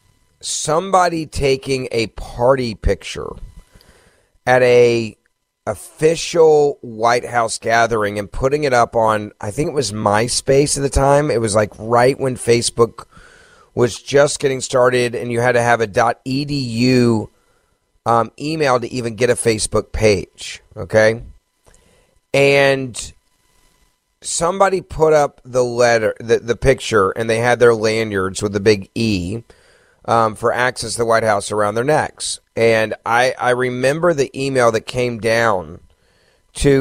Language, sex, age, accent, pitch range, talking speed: English, male, 30-49, American, 110-130 Hz, 145 wpm